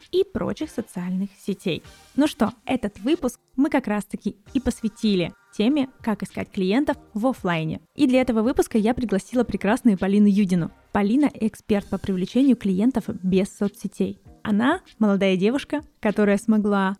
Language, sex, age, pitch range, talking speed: Russian, female, 20-39, 200-250 Hz, 140 wpm